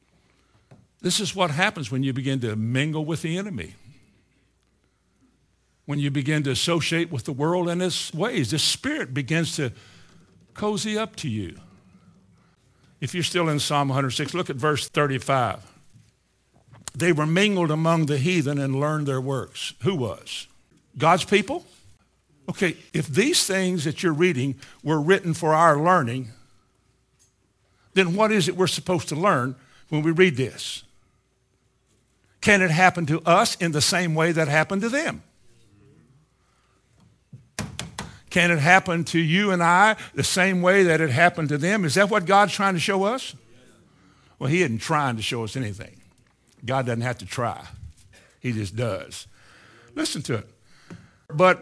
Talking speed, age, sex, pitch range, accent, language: 155 wpm, 60-79, male, 130-180 Hz, American, English